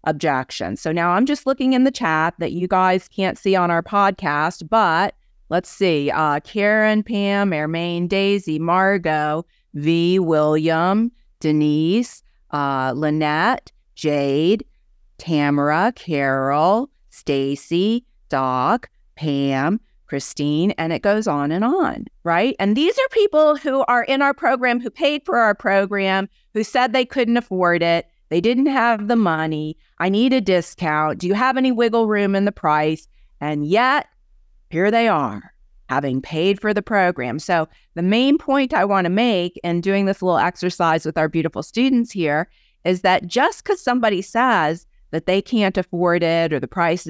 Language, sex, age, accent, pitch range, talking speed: English, female, 40-59, American, 155-225 Hz, 160 wpm